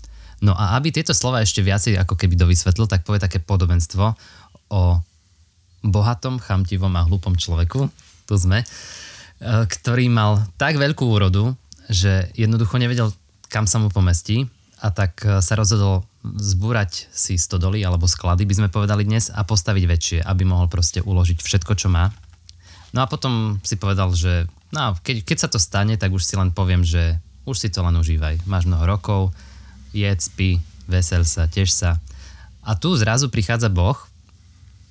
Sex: male